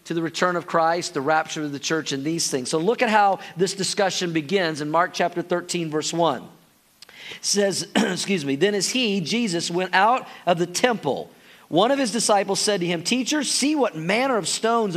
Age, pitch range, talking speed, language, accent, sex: 40-59, 175-230 Hz, 210 wpm, English, American, male